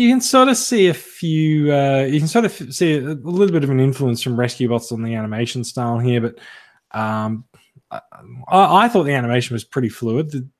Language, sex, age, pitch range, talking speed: English, male, 20-39, 115-155 Hz, 215 wpm